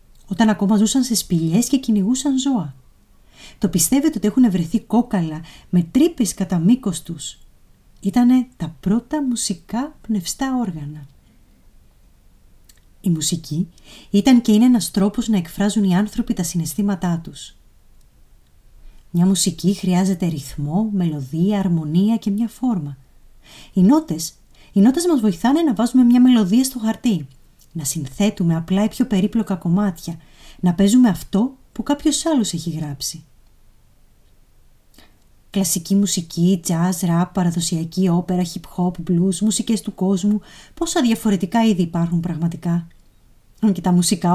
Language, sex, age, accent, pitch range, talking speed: Greek, female, 30-49, native, 170-230 Hz, 125 wpm